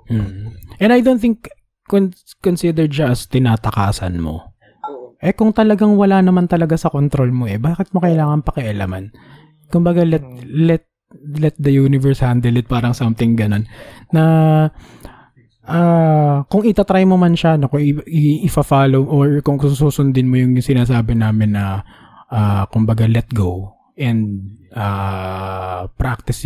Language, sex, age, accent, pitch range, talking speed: Filipino, male, 20-39, native, 105-150 Hz, 150 wpm